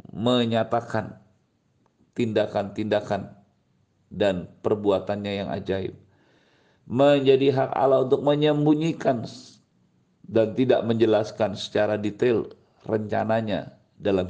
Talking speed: 75 wpm